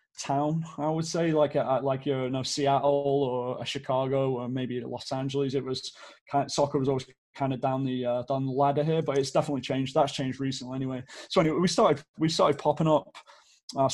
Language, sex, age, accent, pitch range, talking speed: English, male, 20-39, British, 135-145 Hz, 205 wpm